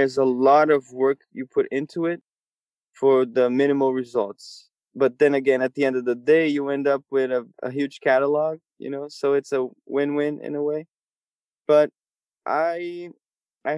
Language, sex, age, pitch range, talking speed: English, male, 20-39, 130-155 Hz, 185 wpm